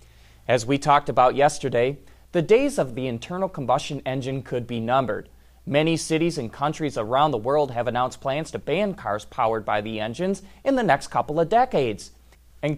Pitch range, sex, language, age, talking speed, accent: 115-160 Hz, male, English, 30-49, 185 wpm, American